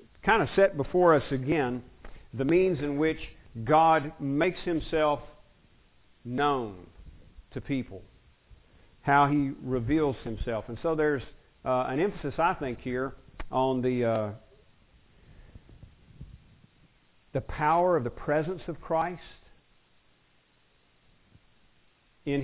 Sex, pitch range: male, 120-155 Hz